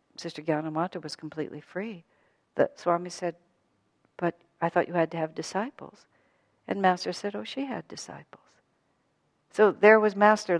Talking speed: 155 wpm